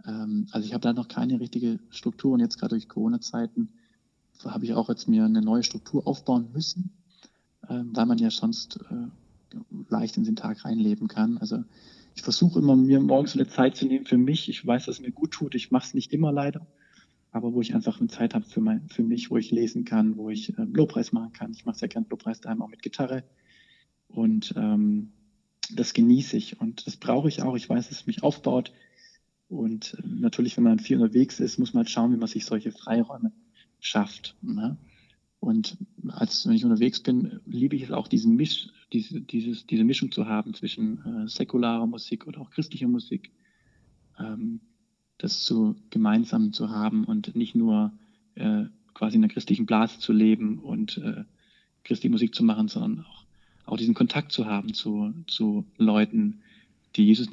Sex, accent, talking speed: male, German, 190 wpm